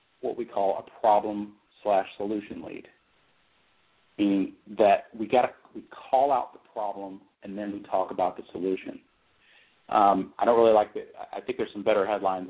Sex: male